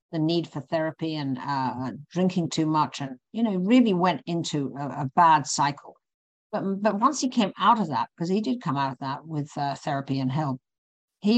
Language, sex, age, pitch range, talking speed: English, female, 50-69, 145-190 Hz, 210 wpm